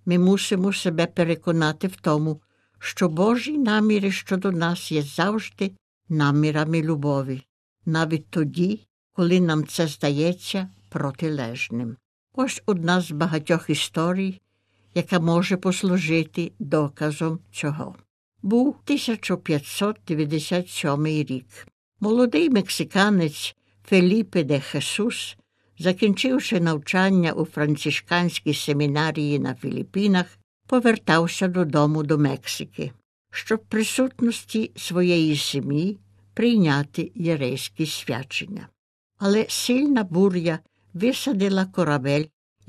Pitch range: 150-195 Hz